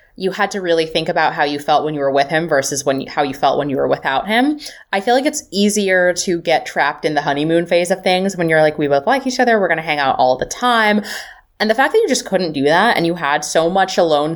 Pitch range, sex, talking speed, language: 145-210 Hz, female, 295 wpm, English